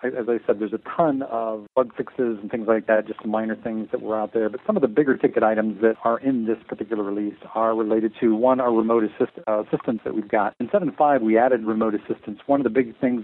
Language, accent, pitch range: English, American, 110-125 Hz